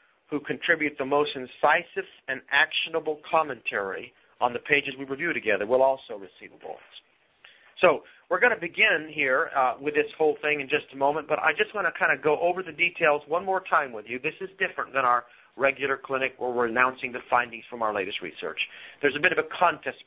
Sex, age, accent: male, 40-59, American